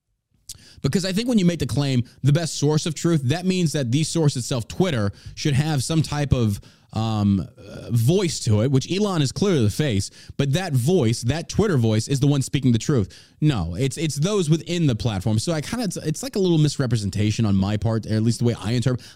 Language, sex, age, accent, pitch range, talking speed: English, male, 30-49, American, 120-175 Hz, 235 wpm